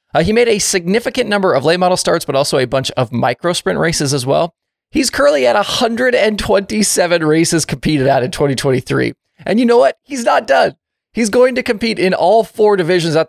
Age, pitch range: 20-39, 135-195 Hz